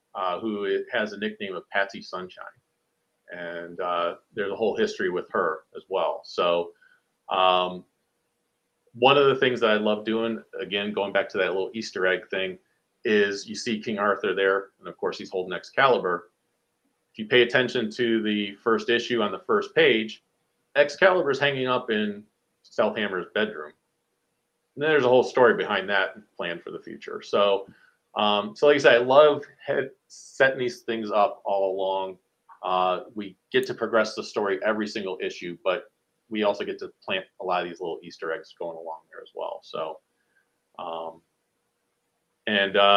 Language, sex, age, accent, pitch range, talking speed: English, male, 40-59, American, 100-145 Hz, 175 wpm